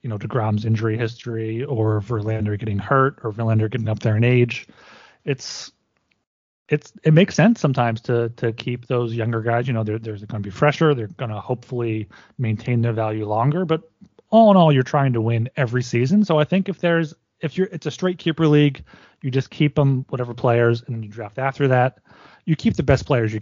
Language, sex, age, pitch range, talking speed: English, male, 30-49, 110-135 Hz, 215 wpm